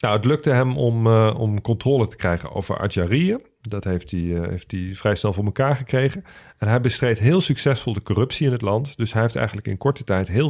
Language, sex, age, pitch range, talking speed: Dutch, male, 40-59, 90-120 Hz, 235 wpm